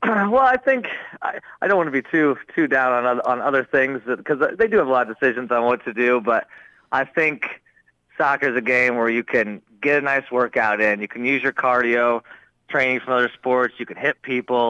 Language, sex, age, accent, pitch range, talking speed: English, male, 30-49, American, 115-135 Hz, 235 wpm